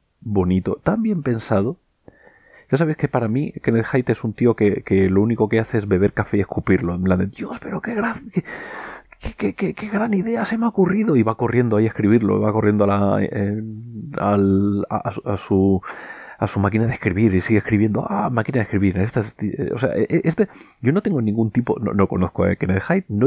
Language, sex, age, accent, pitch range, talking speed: Spanish, male, 30-49, Spanish, 105-165 Hz, 225 wpm